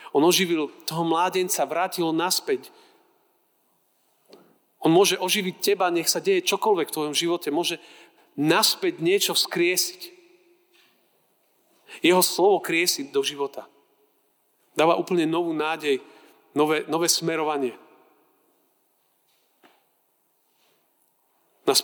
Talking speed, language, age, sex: 95 wpm, Slovak, 40-59, male